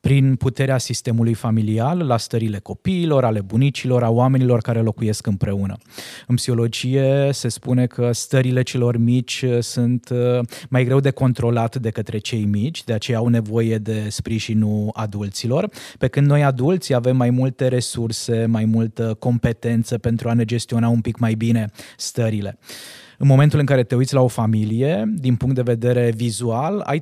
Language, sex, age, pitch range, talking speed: Romanian, male, 20-39, 115-135 Hz, 160 wpm